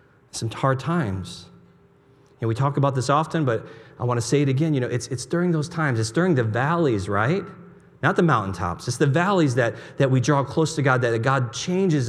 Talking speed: 220 wpm